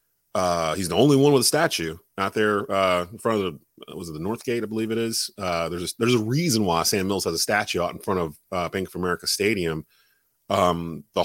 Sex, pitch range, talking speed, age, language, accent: male, 90-115 Hz, 250 wpm, 30-49, English, American